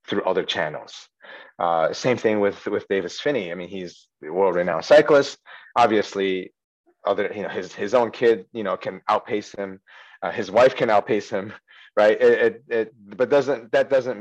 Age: 30-49